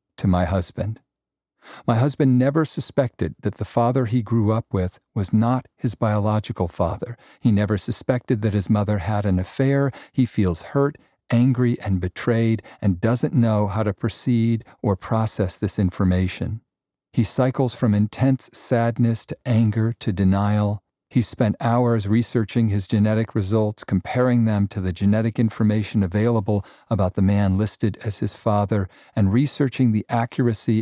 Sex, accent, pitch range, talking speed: male, American, 100-120 Hz, 150 wpm